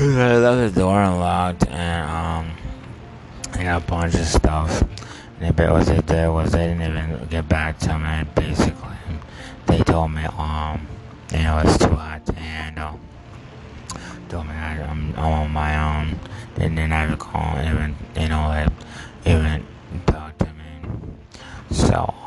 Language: English